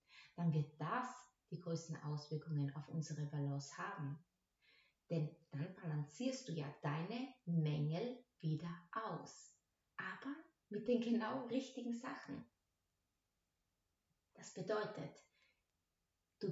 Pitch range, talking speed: 155-230 Hz, 100 wpm